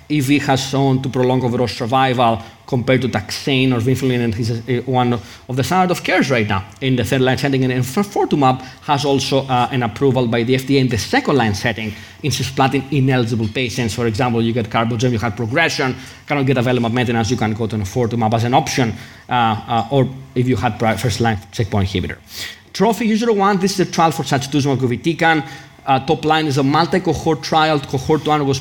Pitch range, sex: 125-145 Hz, male